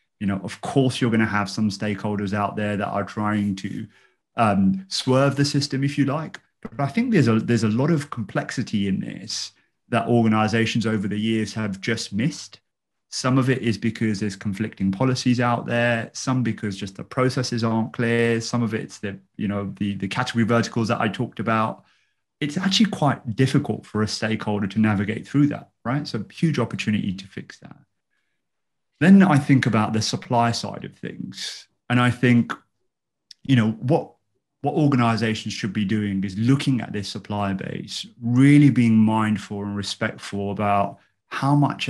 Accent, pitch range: British, 105-125 Hz